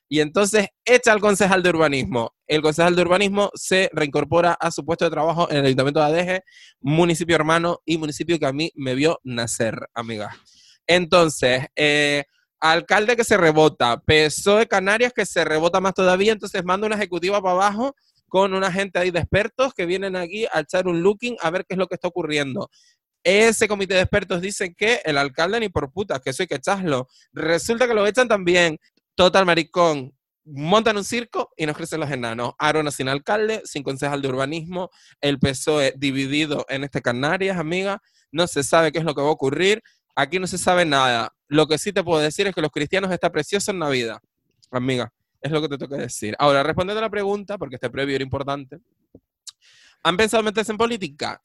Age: 20-39